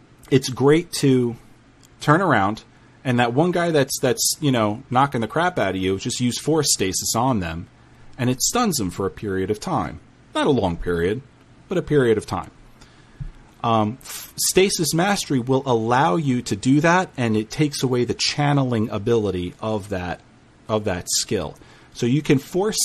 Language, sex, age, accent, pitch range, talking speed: English, male, 40-59, American, 105-140 Hz, 180 wpm